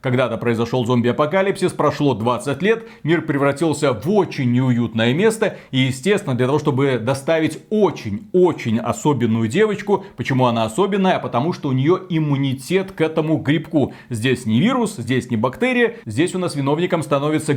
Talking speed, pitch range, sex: 145 wpm, 125-175 Hz, male